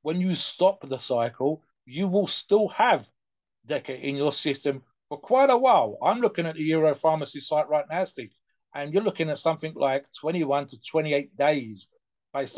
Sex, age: male, 40-59